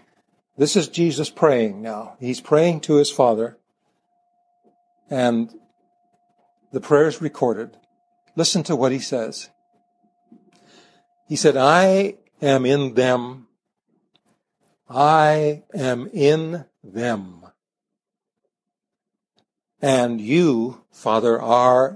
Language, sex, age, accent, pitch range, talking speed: English, male, 60-79, American, 120-200 Hz, 95 wpm